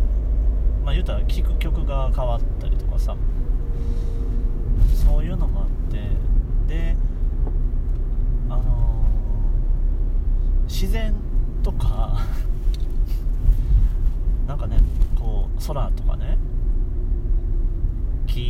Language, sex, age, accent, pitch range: Japanese, male, 30-49, native, 80-110 Hz